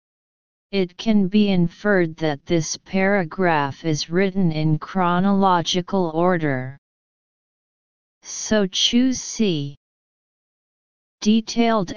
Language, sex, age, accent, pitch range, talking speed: English, female, 40-59, American, 160-205 Hz, 80 wpm